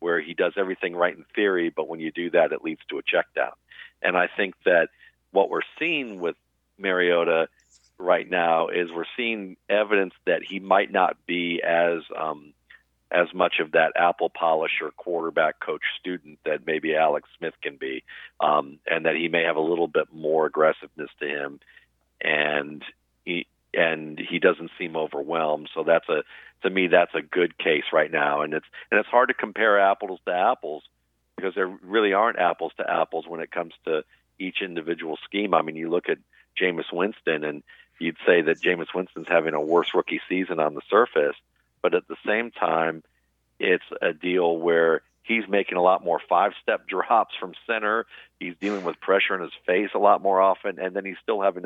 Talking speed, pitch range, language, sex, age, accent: 190 wpm, 75-95 Hz, English, male, 50-69, American